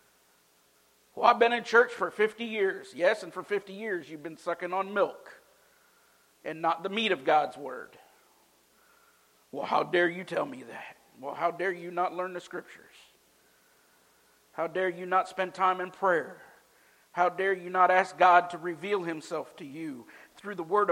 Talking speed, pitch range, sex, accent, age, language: 180 wpm, 175-230 Hz, male, American, 50-69, English